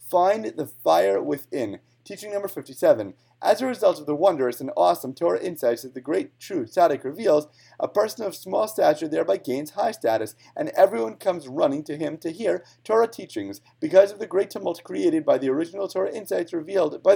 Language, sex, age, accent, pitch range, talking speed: English, male, 30-49, American, 130-200 Hz, 190 wpm